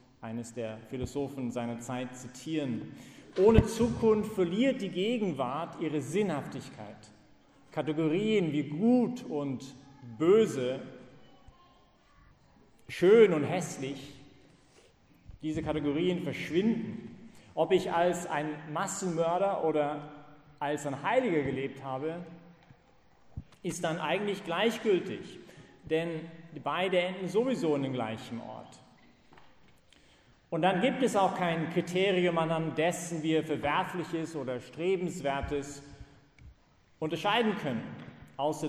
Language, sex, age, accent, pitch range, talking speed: English, male, 40-59, German, 135-180 Hz, 100 wpm